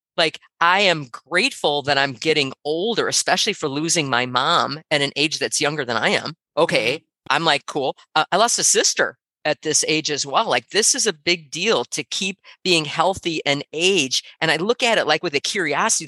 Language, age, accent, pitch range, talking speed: English, 40-59, American, 140-175 Hz, 210 wpm